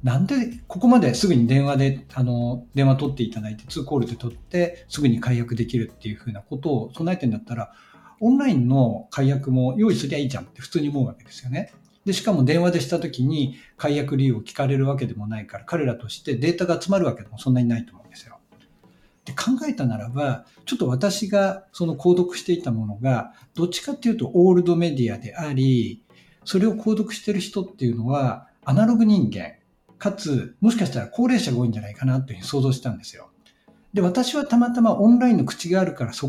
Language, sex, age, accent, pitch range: Japanese, male, 60-79, native, 125-200 Hz